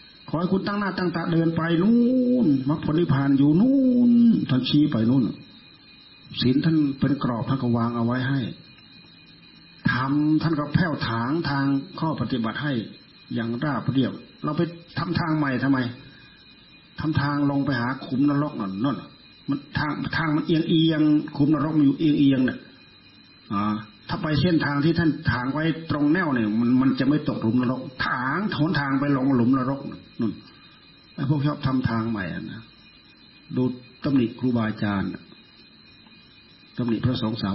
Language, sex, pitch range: Thai, male, 115-150 Hz